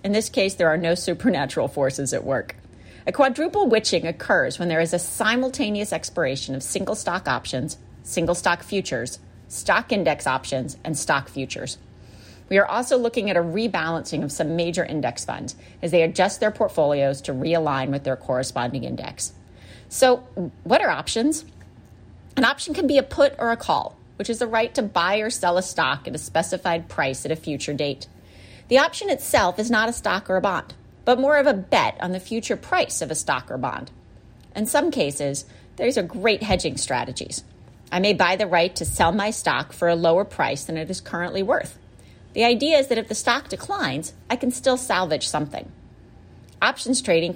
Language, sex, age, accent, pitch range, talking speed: English, female, 30-49, American, 140-225 Hz, 195 wpm